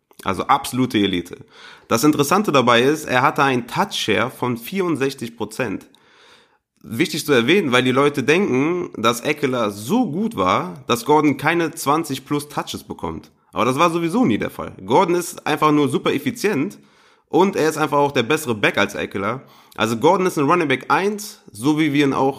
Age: 30-49